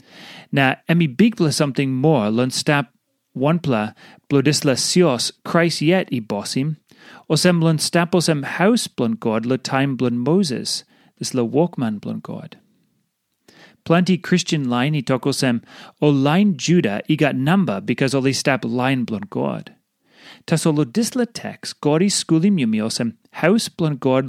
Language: English